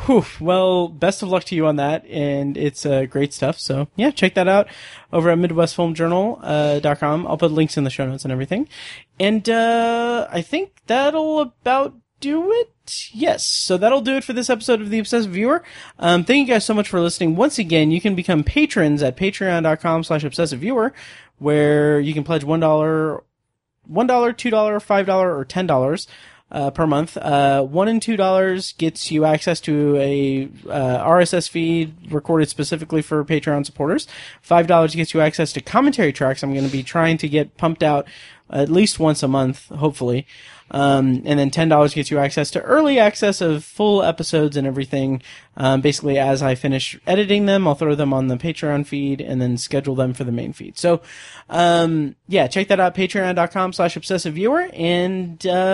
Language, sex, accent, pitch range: English, male, American, 145-195 Hz